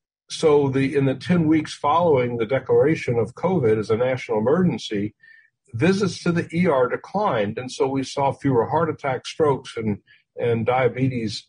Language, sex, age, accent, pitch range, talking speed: English, male, 60-79, American, 115-175 Hz, 160 wpm